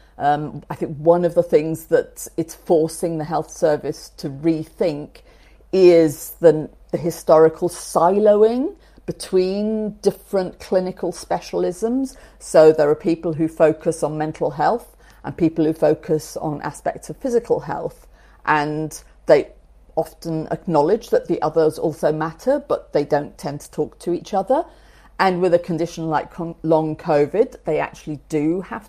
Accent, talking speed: British, 145 wpm